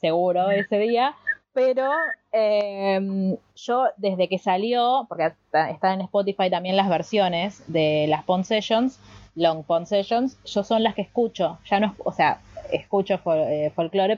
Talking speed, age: 145 wpm, 20-39